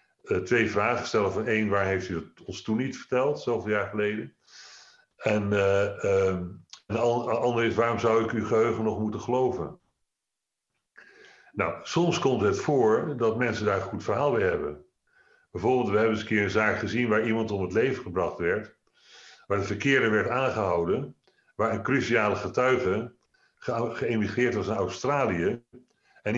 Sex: male